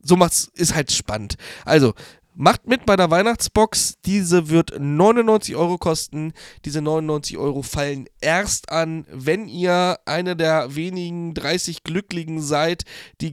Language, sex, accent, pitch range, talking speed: German, male, German, 145-175 Hz, 140 wpm